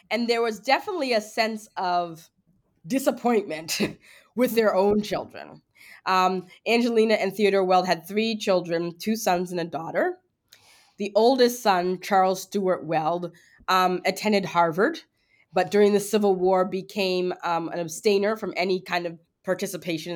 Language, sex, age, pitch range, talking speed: English, female, 20-39, 175-220 Hz, 145 wpm